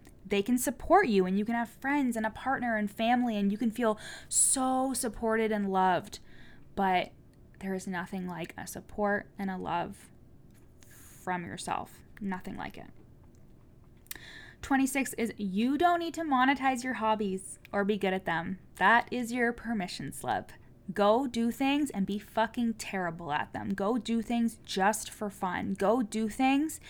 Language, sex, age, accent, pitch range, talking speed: English, female, 10-29, American, 190-235 Hz, 165 wpm